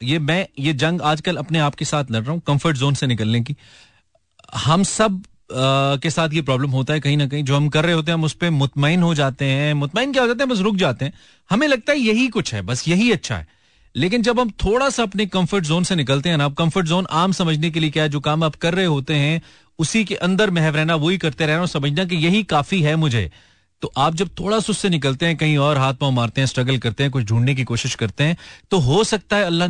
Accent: native